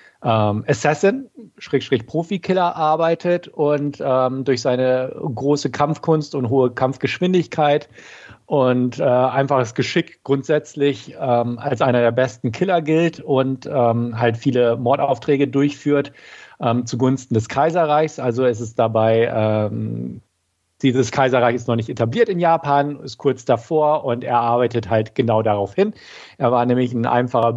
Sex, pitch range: male, 115-145 Hz